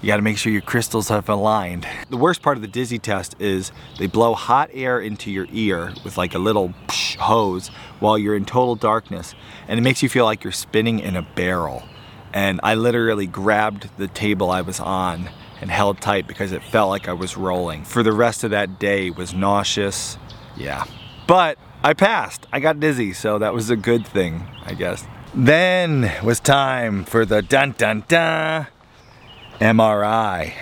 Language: English